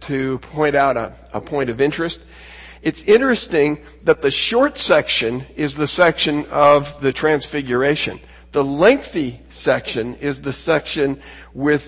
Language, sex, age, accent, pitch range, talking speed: English, male, 50-69, American, 115-150 Hz, 140 wpm